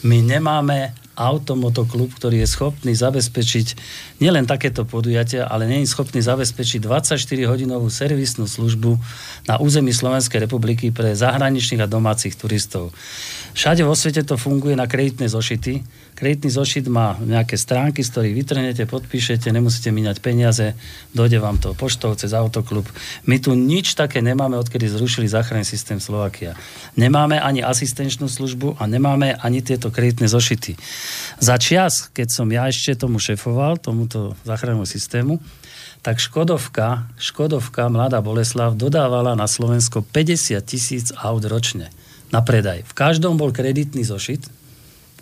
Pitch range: 115-140 Hz